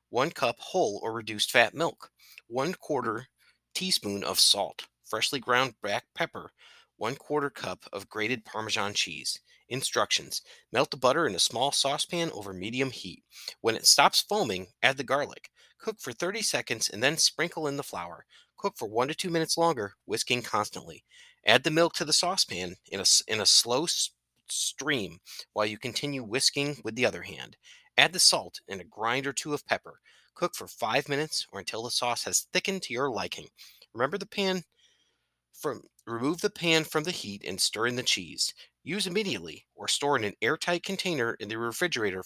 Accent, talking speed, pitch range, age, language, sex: American, 180 wpm, 110-175 Hz, 30-49, English, male